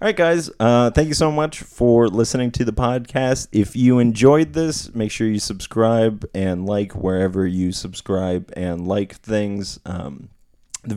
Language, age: English, 30-49